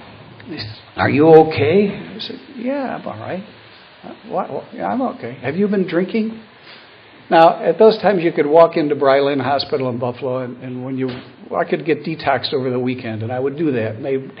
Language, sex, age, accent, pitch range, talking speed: English, male, 60-79, American, 115-150 Hz, 205 wpm